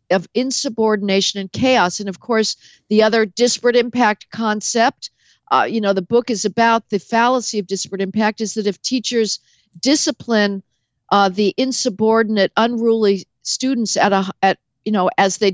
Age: 50-69